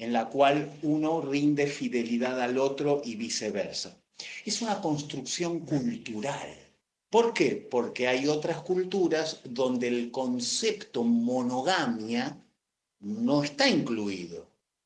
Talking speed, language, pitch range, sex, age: 110 wpm, Spanish, 130-195 Hz, male, 50-69